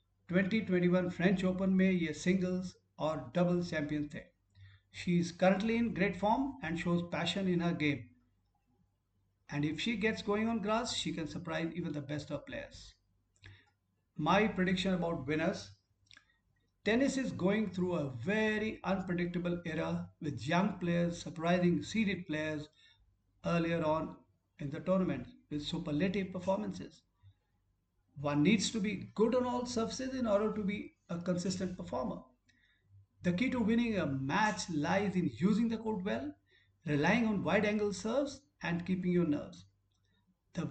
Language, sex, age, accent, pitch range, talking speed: English, male, 50-69, Indian, 145-205 Hz, 145 wpm